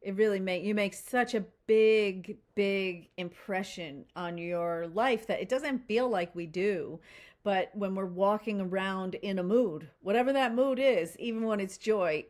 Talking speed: 175 wpm